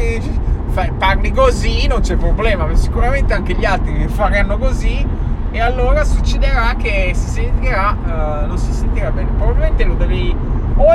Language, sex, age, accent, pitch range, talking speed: Italian, male, 20-39, native, 75-85 Hz, 140 wpm